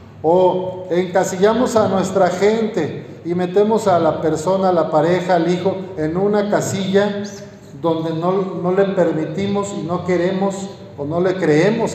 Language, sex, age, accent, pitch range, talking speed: Spanish, male, 50-69, Mexican, 145-195 Hz, 150 wpm